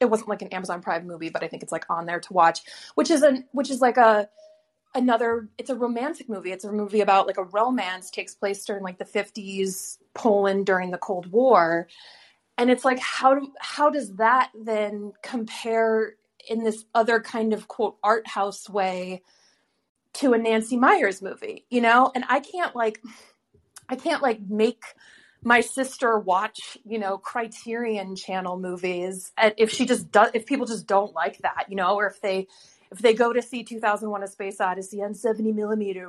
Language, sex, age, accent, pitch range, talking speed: English, female, 30-49, American, 195-245 Hz, 195 wpm